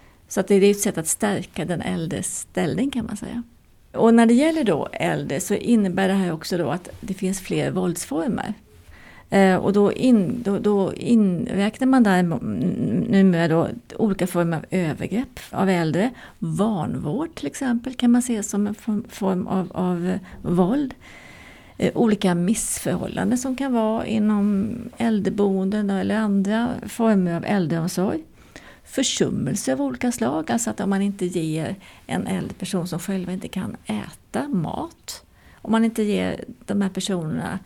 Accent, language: native, Swedish